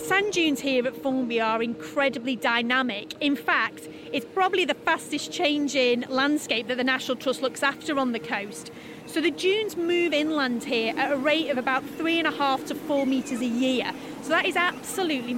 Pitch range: 255-335 Hz